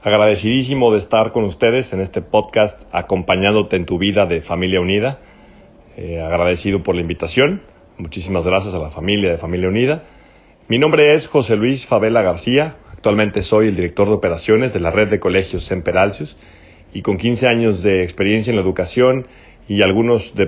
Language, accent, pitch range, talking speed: Spanish, Mexican, 95-130 Hz, 175 wpm